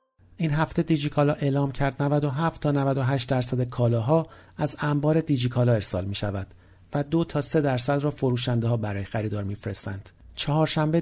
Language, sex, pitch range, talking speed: Persian, male, 120-150 Hz, 145 wpm